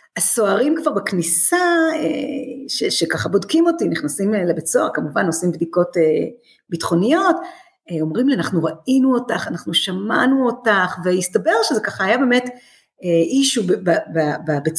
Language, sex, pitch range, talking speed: Hebrew, female, 165-275 Hz, 120 wpm